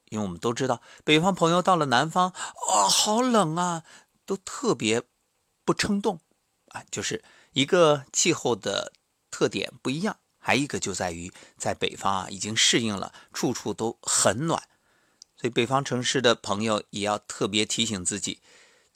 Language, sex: Chinese, male